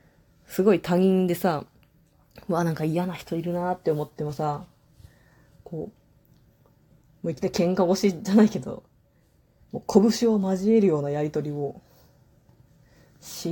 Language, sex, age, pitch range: Japanese, female, 20-39, 145-180 Hz